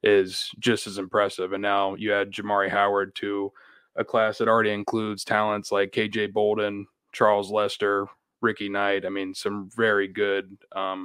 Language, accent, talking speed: English, American, 165 wpm